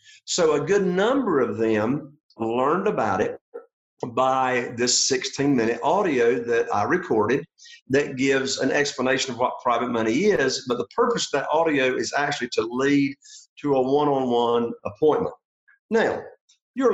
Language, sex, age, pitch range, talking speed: English, male, 50-69, 120-165 Hz, 145 wpm